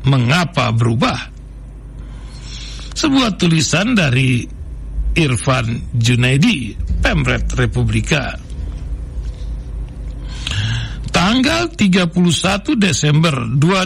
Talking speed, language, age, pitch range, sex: 50 wpm, Indonesian, 60-79, 135-195 Hz, male